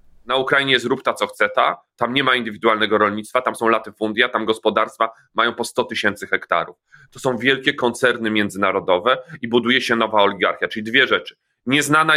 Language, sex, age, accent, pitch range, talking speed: Polish, male, 30-49, native, 110-140 Hz, 180 wpm